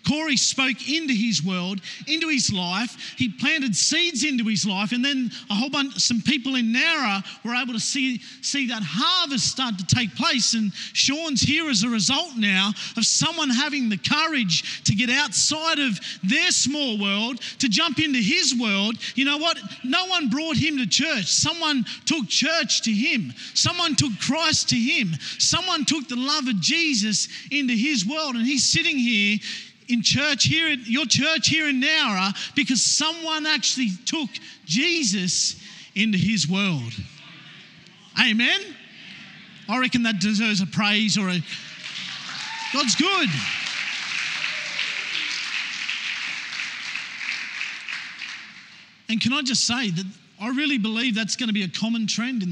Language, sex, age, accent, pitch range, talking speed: English, male, 40-59, Australian, 205-270 Hz, 155 wpm